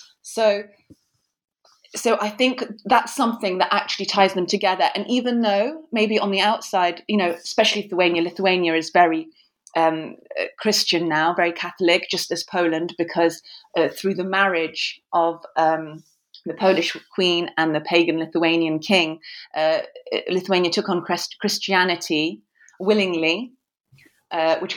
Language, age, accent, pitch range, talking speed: English, 30-49, British, 170-205 Hz, 140 wpm